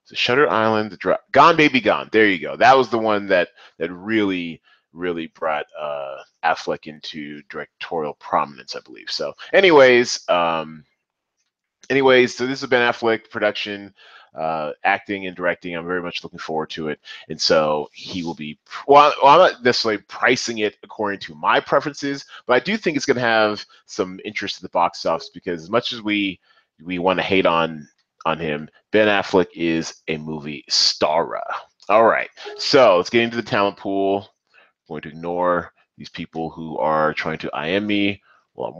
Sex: male